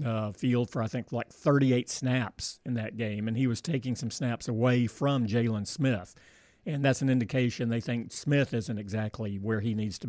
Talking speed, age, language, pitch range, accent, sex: 200 wpm, 50-69, English, 115-140 Hz, American, male